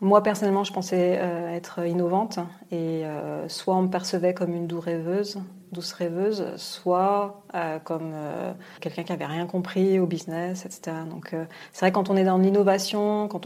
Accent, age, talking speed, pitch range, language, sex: French, 30-49, 160 wpm, 170-195 Hz, French, female